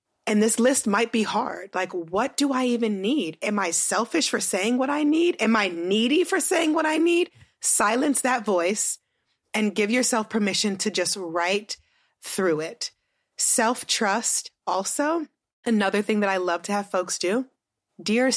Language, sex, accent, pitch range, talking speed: English, female, American, 185-240 Hz, 170 wpm